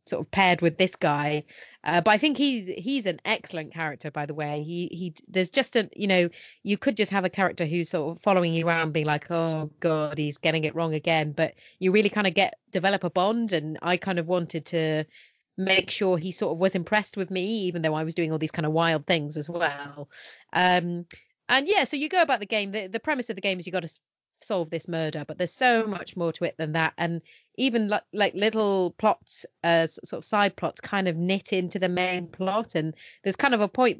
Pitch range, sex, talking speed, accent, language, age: 160-200 Hz, female, 240 wpm, British, English, 30-49